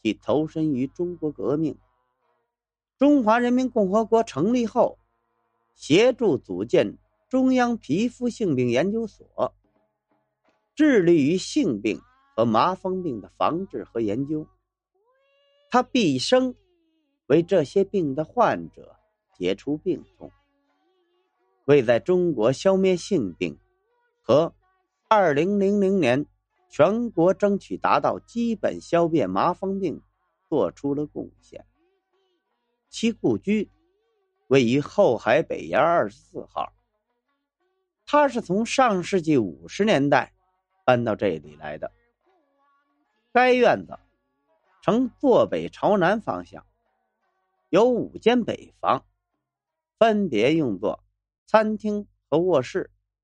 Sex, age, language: male, 50-69, Chinese